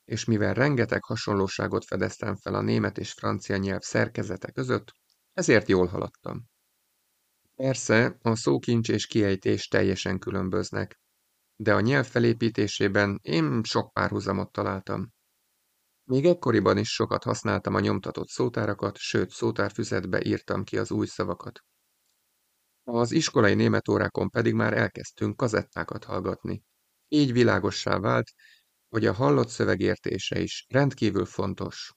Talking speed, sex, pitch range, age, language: 120 wpm, male, 95-115 Hz, 30-49, Hungarian